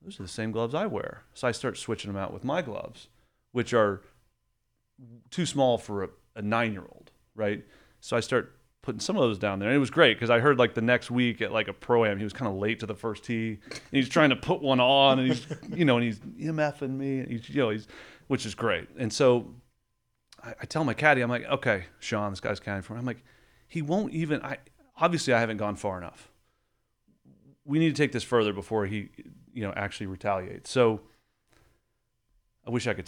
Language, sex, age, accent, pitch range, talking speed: English, male, 30-49, American, 100-125 Hz, 230 wpm